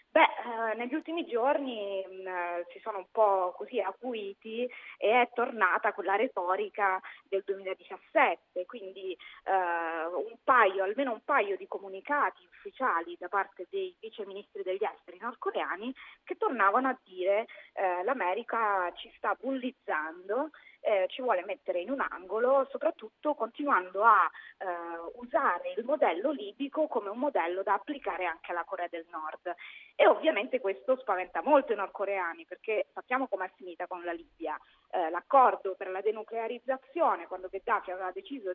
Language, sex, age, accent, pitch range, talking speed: Italian, female, 20-39, native, 185-275 Hz, 145 wpm